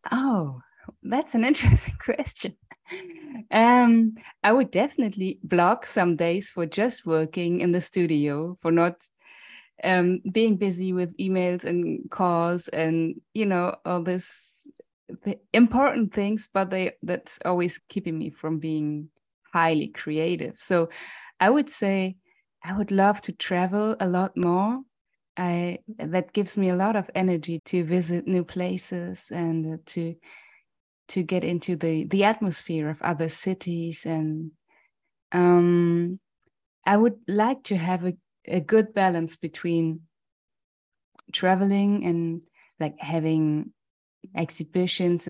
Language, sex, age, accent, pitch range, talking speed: English, female, 20-39, German, 170-200 Hz, 125 wpm